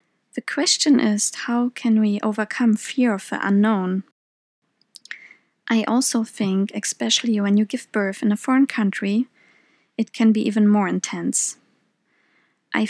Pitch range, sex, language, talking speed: 200-240 Hz, female, English, 140 wpm